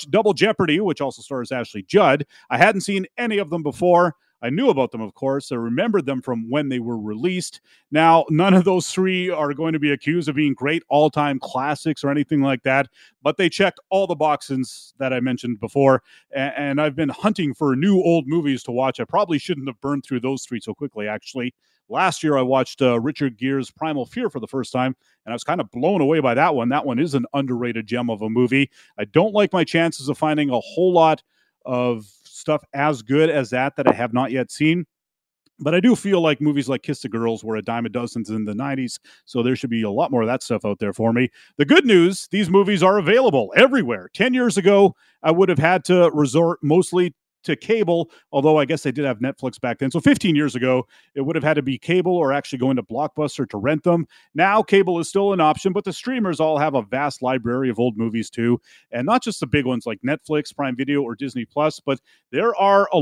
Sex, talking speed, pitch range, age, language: male, 235 wpm, 130-180 Hz, 30-49, English